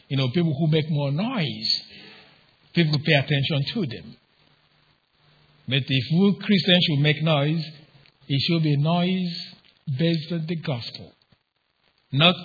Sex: male